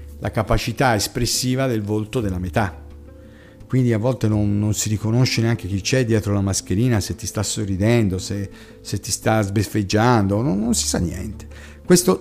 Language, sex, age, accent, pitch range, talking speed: Italian, male, 50-69, native, 105-130 Hz, 170 wpm